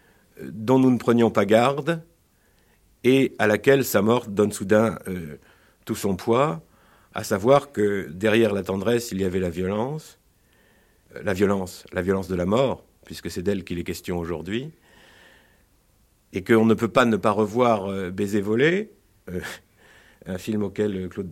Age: 50-69